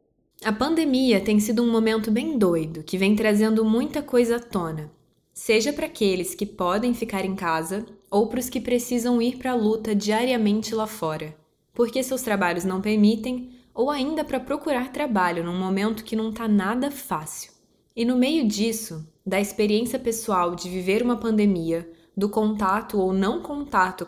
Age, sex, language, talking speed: 20-39, female, Portuguese, 170 wpm